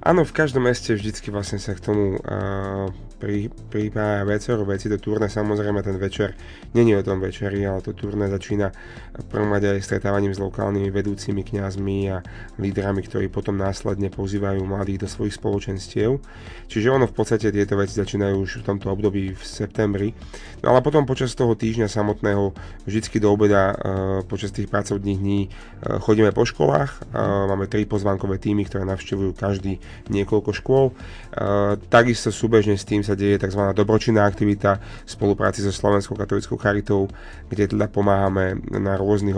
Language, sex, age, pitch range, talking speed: Slovak, male, 30-49, 100-110 Hz, 165 wpm